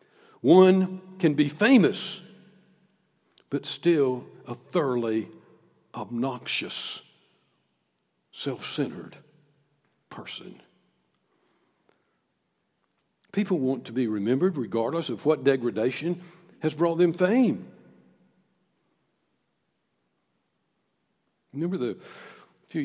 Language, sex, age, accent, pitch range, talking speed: English, male, 60-79, American, 140-190 Hz, 75 wpm